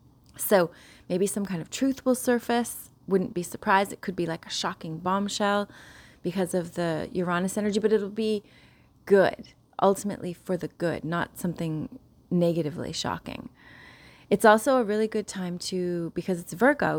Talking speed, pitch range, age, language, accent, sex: 160 wpm, 175-210 Hz, 30-49, English, American, female